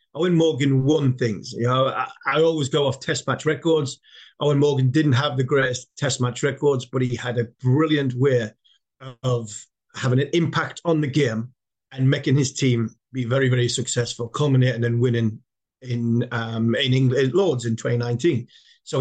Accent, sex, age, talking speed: British, male, 40-59, 175 wpm